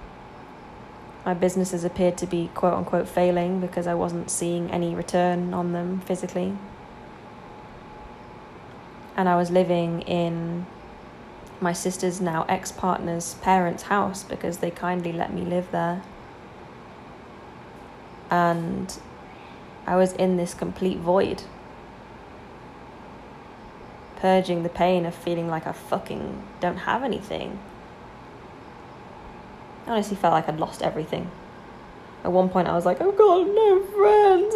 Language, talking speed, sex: English, 120 wpm, female